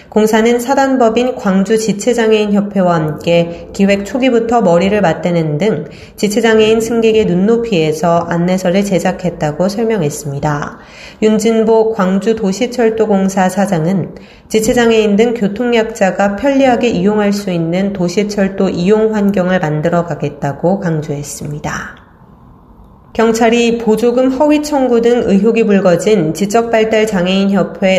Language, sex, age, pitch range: Korean, female, 30-49, 175-225 Hz